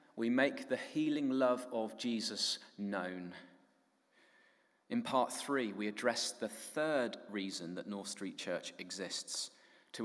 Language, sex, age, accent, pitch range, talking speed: English, male, 30-49, British, 110-145 Hz, 130 wpm